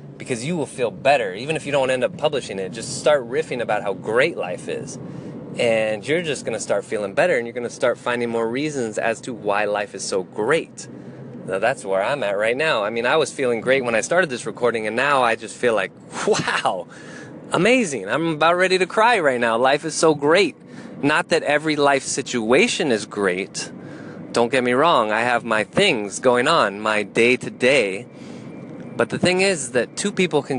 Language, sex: English, male